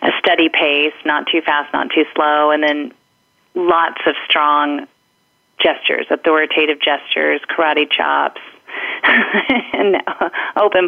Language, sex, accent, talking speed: English, female, American, 115 wpm